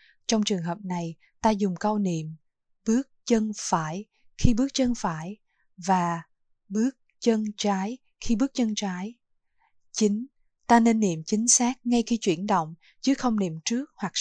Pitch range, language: 180-230 Hz, Vietnamese